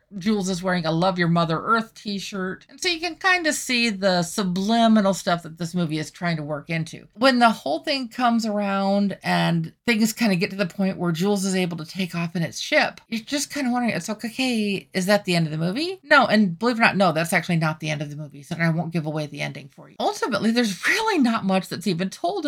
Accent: American